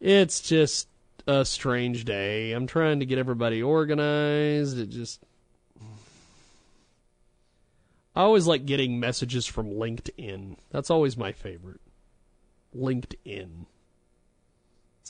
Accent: American